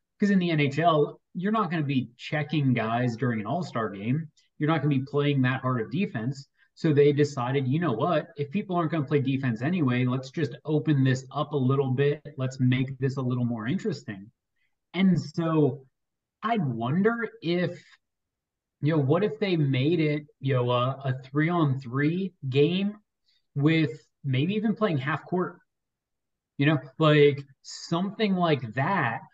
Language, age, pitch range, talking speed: English, 30-49, 130-165 Hz, 175 wpm